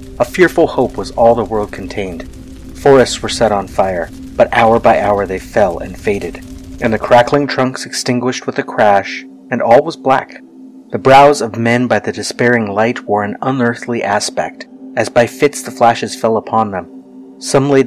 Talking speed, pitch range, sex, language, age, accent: 185 wpm, 110-145 Hz, male, English, 30-49, American